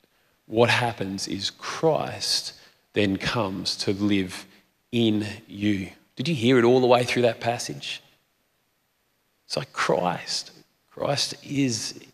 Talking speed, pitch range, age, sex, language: 125 wpm, 120-155 Hz, 30-49, male, English